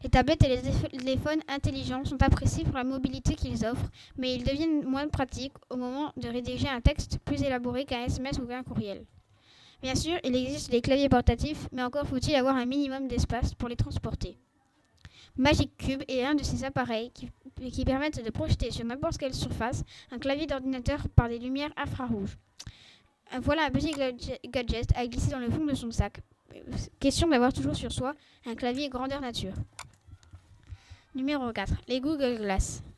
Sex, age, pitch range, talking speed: female, 20-39, 240-280 Hz, 175 wpm